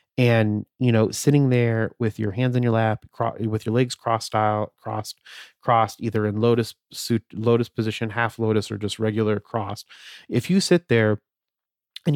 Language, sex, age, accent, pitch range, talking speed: English, male, 30-49, American, 110-130 Hz, 170 wpm